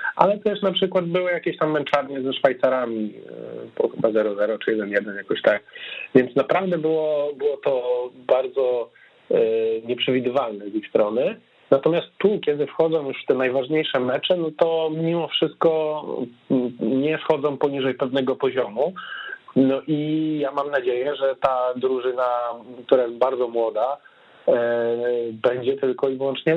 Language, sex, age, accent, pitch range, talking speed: Polish, male, 40-59, native, 115-150 Hz, 140 wpm